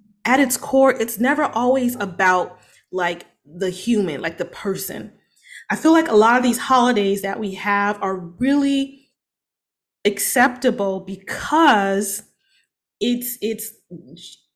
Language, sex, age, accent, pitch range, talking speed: English, female, 20-39, American, 195-250 Hz, 125 wpm